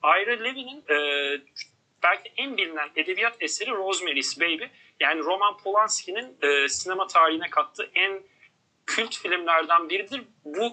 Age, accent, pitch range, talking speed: 40-59, native, 160-215 Hz, 125 wpm